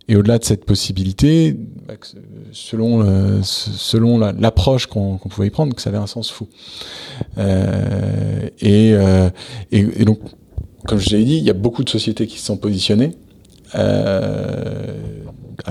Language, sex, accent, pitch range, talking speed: English, male, French, 100-115 Hz, 155 wpm